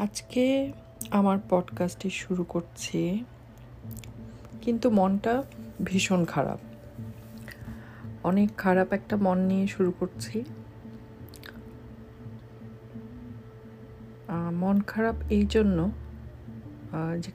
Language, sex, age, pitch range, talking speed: Bengali, female, 50-69, 115-175 Hz, 60 wpm